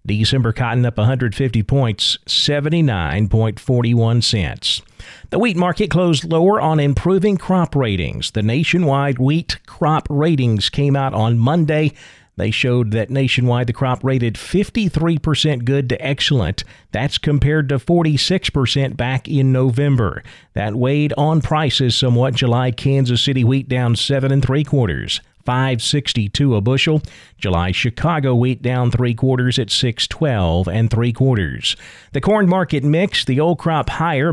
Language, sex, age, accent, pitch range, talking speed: English, male, 40-59, American, 120-150 Hz, 140 wpm